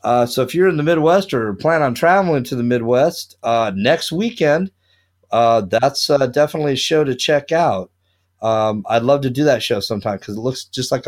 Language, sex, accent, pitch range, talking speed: English, male, American, 115-155 Hz, 210 wpm